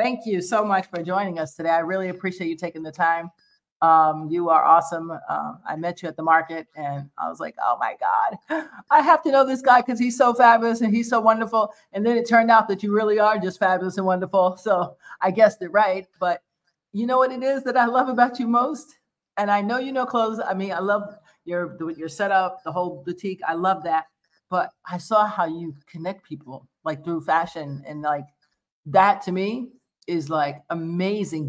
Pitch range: 170-235 Hz